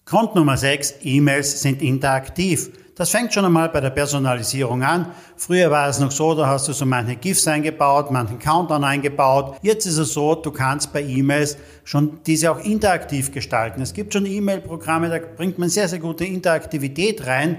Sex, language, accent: male, German, German